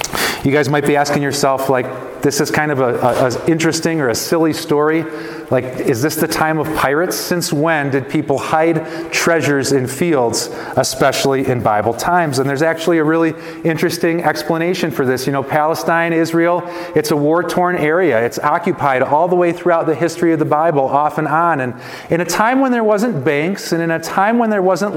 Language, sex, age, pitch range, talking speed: English, male, 30-49, 135-170 Hz, 195 wpm